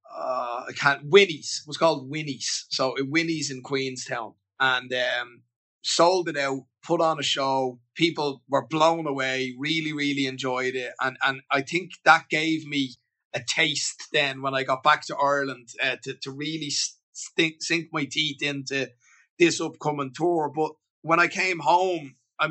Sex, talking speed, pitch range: male, 165 wpm, 130-160 Hz